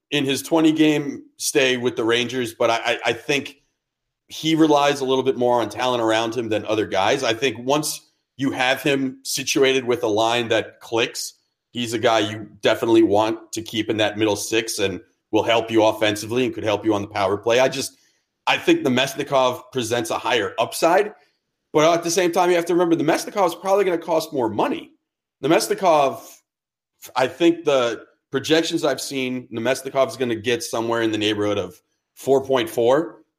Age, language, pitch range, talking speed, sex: 40-59, English, 120-165 Hz, 190 wpm, male